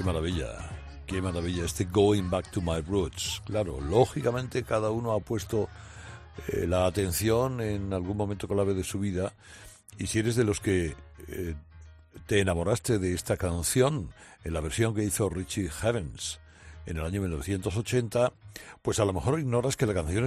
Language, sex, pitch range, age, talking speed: Spanish, male, 85-110 Hz, 60-79, 170 wpm